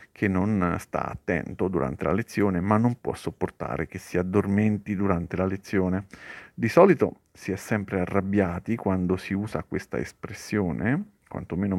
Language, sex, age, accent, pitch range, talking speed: Italian, male, 50-69, native, 95-110 Hz, 150 wpm